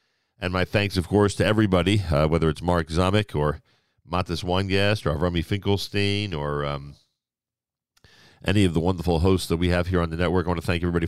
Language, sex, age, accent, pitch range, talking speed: English, male, 40-59, American, 85-105 Hz, 200 wpm